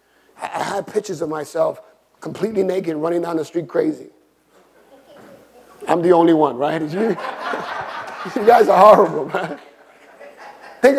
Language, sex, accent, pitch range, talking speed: English, male, American, 145-205 Hz, 140 wpm